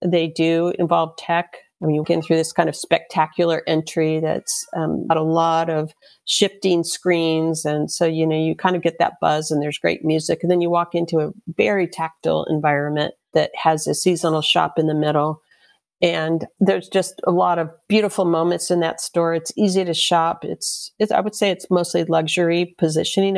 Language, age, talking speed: English, 50-69, 200 wpm